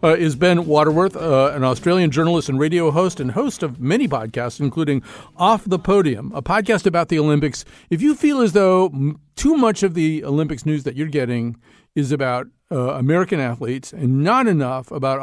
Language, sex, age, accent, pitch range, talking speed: English, male, 50-69, American, 130-170 Hz, 190 wpm